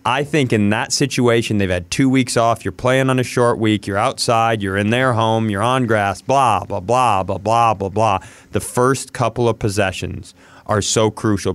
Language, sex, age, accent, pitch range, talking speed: English, male, 30-49, American, 110-140 Hz, 210 wpm